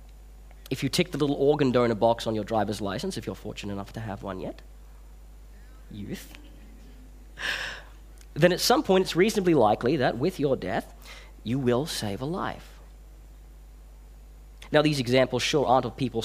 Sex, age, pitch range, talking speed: male, 40-59, 100-135 Hz, 165 wpm